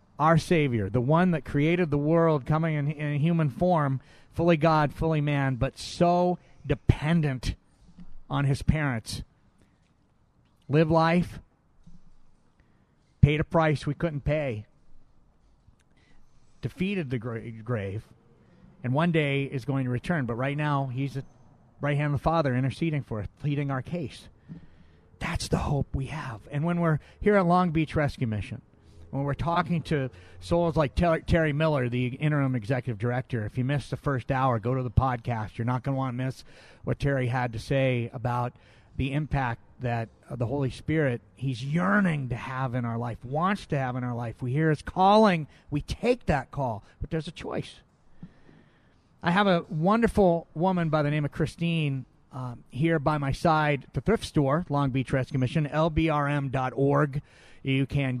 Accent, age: American, 40-59